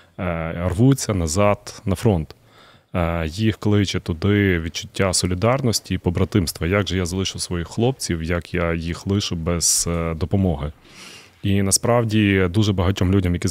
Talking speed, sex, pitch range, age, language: 130 wpm, male, 90-115 Hz, 20-39, Ukrainian